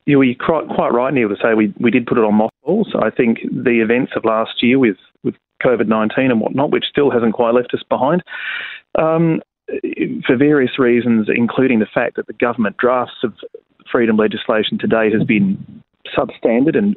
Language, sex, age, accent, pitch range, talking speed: English, male, 30-49, Australian, 110-130 Hz, 180 wpm